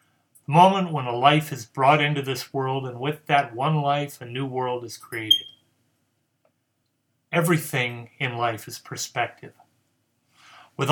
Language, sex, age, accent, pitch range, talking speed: English, male, 30-49, American, 125-145 Hz, 135 wpm